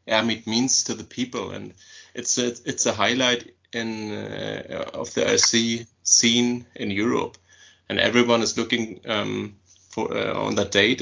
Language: English